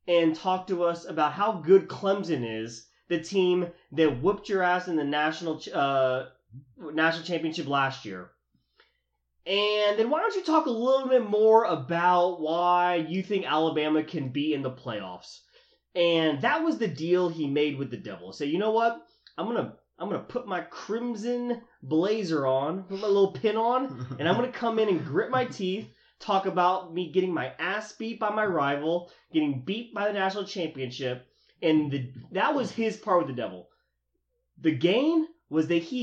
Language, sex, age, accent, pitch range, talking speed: English, male, 20-39, American, 140-205 Hz, 185 wpm